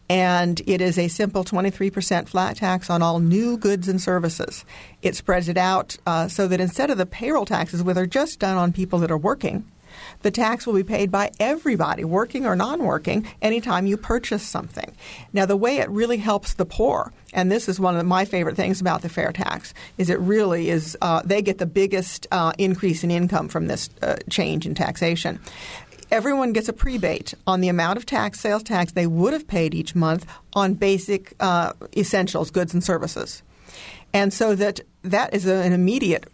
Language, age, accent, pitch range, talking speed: English, 50-69, American, 175-205 Hz, 200 wpm